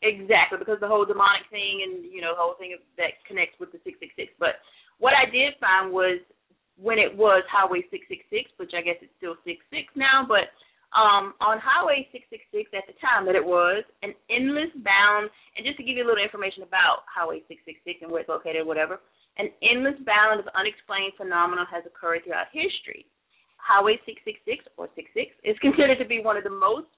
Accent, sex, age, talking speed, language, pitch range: American, female, 30-49, 200 wpm, English, 185-270 Hz